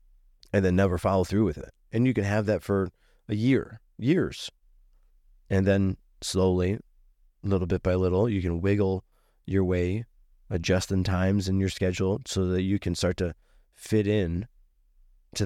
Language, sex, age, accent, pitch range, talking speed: English, male, 20-39, American, 90-105 Hz, 165 wpm